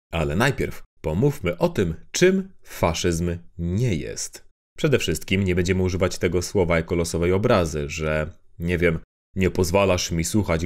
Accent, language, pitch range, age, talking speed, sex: native, Polish, 85-110 Hz, 30-49, 145 wpm, male